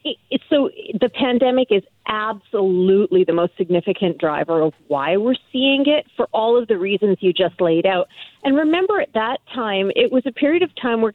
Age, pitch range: 40-59, 185-255 Hz